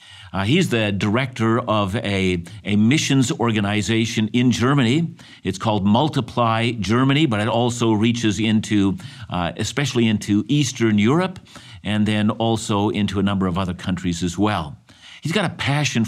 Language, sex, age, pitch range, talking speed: English, male, 50-69, 95-120 Hz, 150 wpm